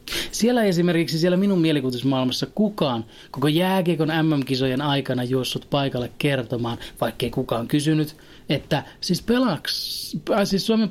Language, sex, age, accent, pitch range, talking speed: Finnish, male, 30-49, native, 130-165 Hz, 110 wpm